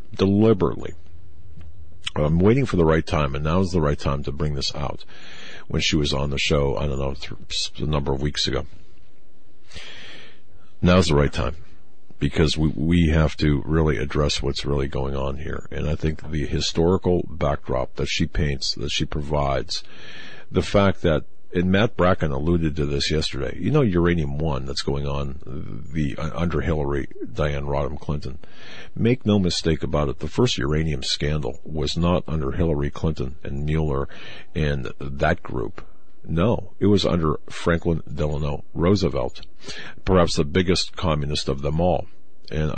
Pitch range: 70-85 Hz